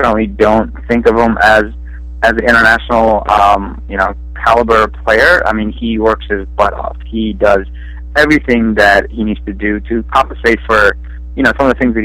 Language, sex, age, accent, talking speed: English, male, 30-49, American, 195 wpm